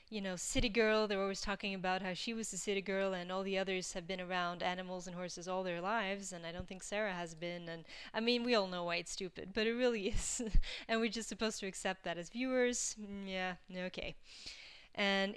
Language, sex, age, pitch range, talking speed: English, female, 20-39, 185-225 Hz, 235 wpm